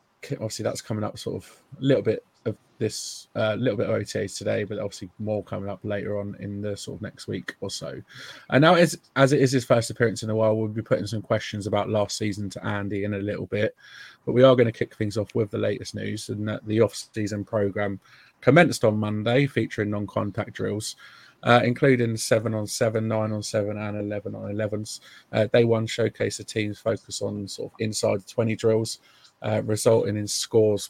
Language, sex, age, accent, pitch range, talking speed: English, male, 20-39, British, 105-115 Hz, 220 wpm